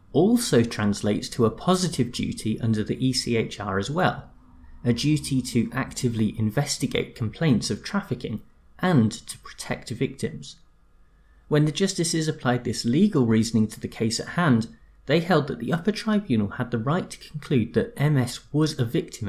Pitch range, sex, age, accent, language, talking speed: 110-155 Hz, male, 30-49, British, English, 160 wpm